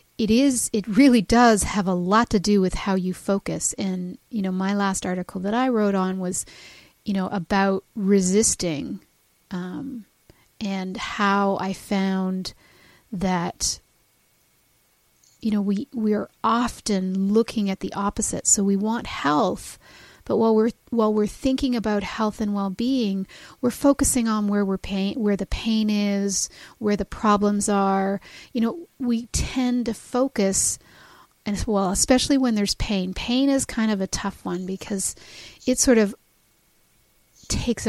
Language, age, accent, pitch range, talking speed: English, 40-59, American, 195-230 Hz, 155 wpm